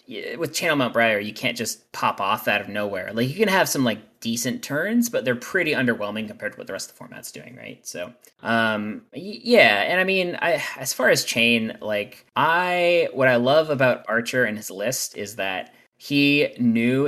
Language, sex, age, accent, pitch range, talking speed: English, male, 20-39, American, 105-130 Hz, 205 wpm